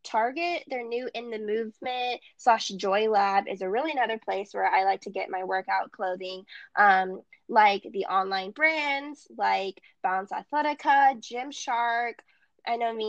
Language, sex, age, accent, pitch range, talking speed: English, female, 10-29, American, 200-270 Hz, 155 wpm